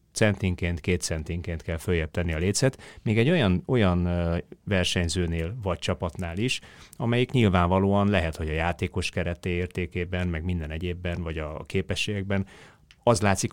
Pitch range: 85-100 Hz